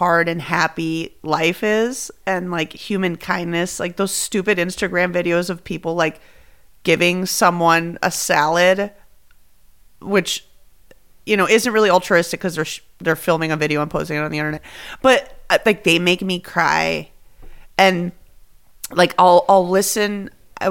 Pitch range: 175-230 Hz